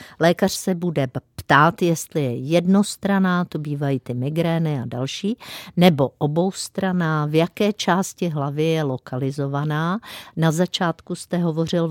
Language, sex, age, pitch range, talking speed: Czech, female, 50-69, 140-175 Hz, 125 wpm